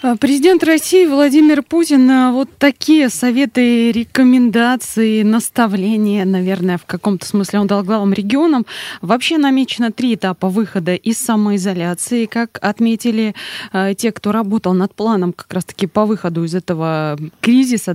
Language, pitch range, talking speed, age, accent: Russian, 180-235 Hz, 125 wpm, 20-39, native